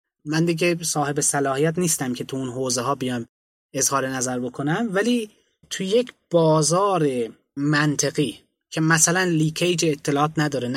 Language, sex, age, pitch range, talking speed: Persian, male, 20-39, 140-175 Hz, 135 wpm